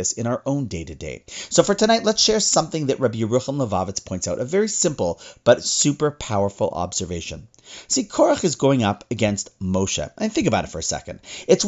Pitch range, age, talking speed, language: 105-160 Hz, 40-59, 195 wpm, English